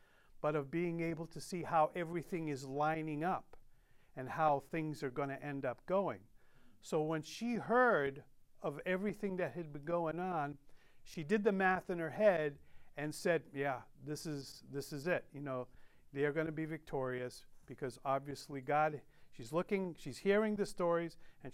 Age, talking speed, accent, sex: 50-69, 180 wpm, American, male